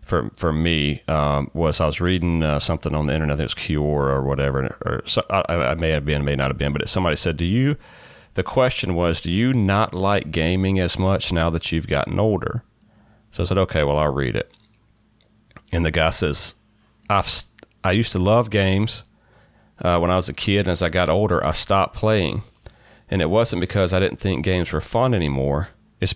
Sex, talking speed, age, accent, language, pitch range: male, 220 wpm, 30-49, American, English, 80-110 Hz